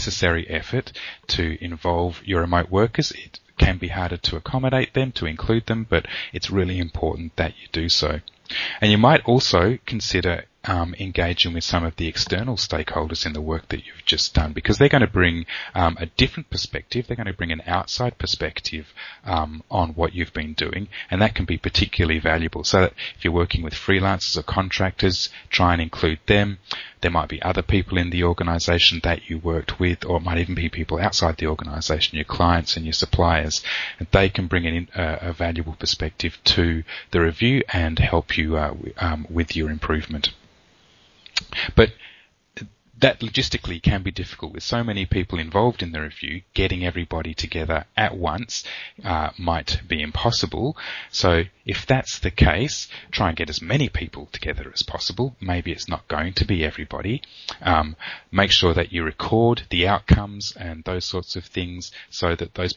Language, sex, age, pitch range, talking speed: English, male, 30-49, 80-95 Hz, 185 wpm